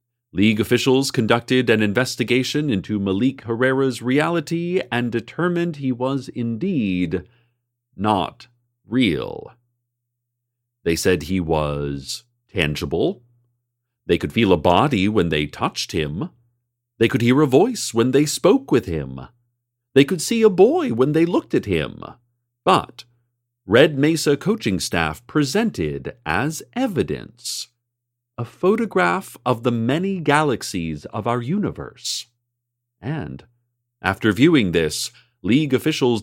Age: 40-59